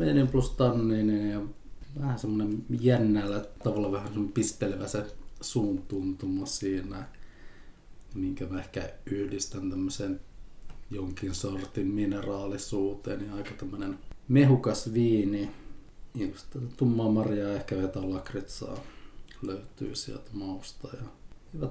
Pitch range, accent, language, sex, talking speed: 100-115 Hz, native, Finnish, male, 100 wpm